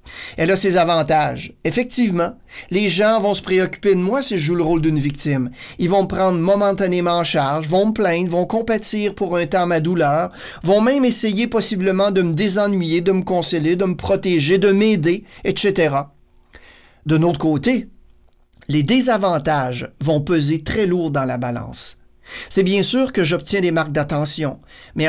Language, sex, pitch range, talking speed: French, male, 160-205 Hz, 175 wpm